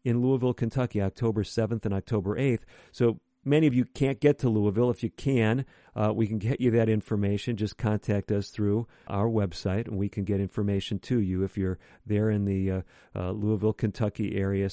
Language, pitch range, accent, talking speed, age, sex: English, 100-120 Hz, American, 200 wpm, 50-69, male